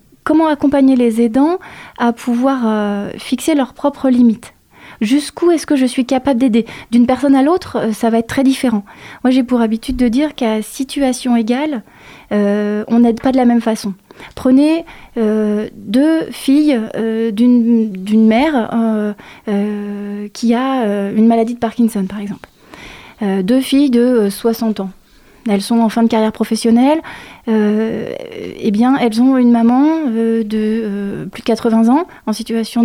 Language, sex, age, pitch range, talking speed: French, female, 20-39, 215-260 Hz, 170 wpm